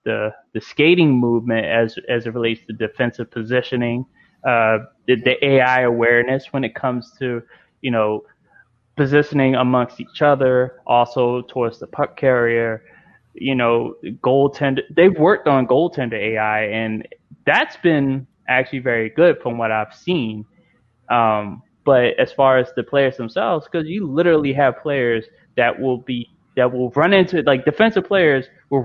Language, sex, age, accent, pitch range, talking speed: English, male, 20-39, American, 125-155 Hz, 155 wpm